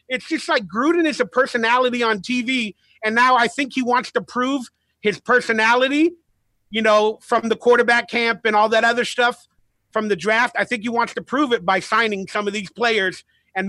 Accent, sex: American, male